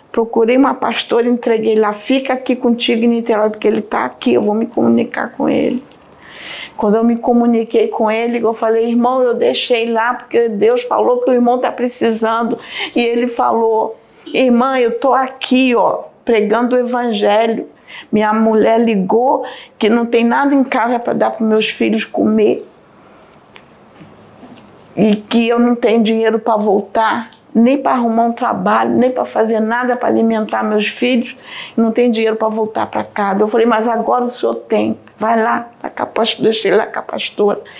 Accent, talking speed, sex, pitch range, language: Brazilian, 175 wpm, female, 220-250 Hz, Portuguese